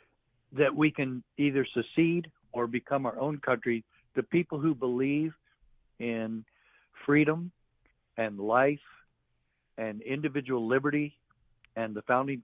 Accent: American